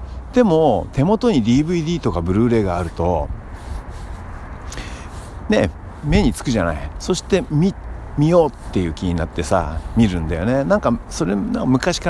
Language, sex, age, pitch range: Japanese, male, 60-79, 85-115 Hz